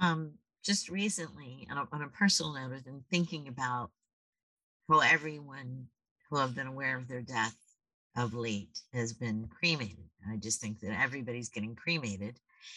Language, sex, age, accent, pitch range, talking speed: English, female, 50-69, American, 120-155 Hz, 160 wpm